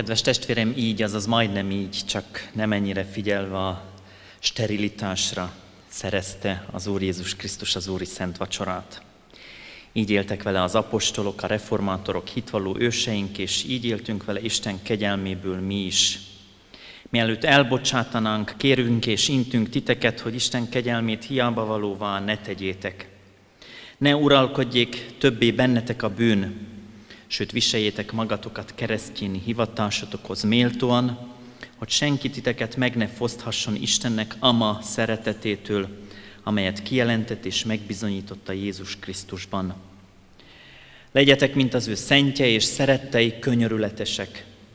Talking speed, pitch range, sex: 115 wpm, 100-120 Hz, male